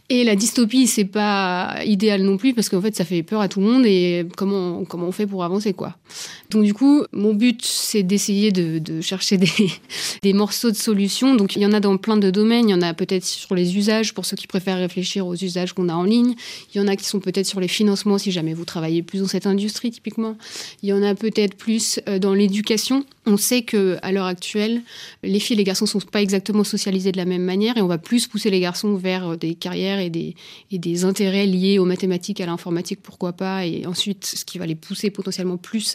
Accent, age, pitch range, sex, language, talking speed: French, 30-49, 185-215 Hz, female, French, 240 wpm